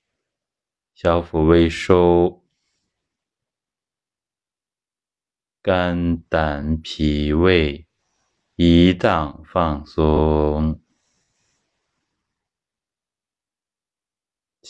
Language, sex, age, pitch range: Chinese, male, 30-49, 75-85 Hz